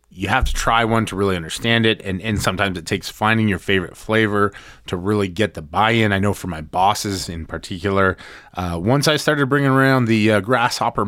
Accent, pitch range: American, 95-125 Hz